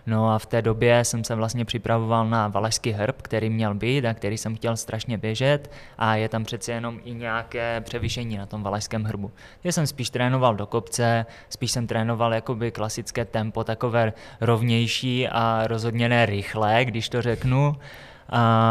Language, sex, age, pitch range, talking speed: Czech, male, 20-39, 110-120 Hz, 175 wpm